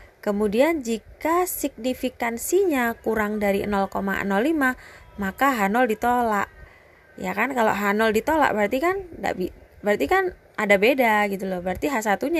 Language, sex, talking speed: Indonesian, female, 120 wpm